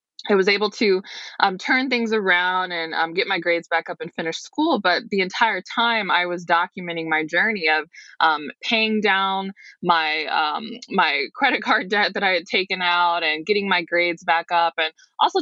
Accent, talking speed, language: American, 195 wpm, English